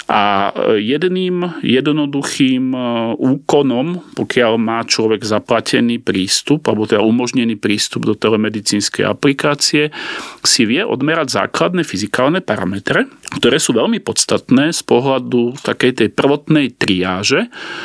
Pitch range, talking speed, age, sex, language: 110-145 Hz, 110 wpm, 40-59, male, Slovak